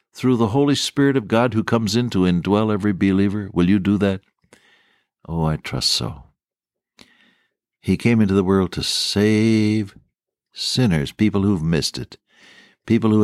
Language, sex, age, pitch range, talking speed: English, male, 60-79, 90-125 Hz, 160 wpm